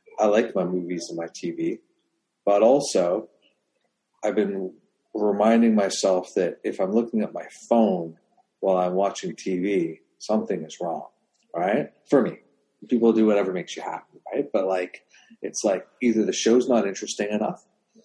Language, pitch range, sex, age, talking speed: English, 95-120 Hz, male, 40-59, 155 wpm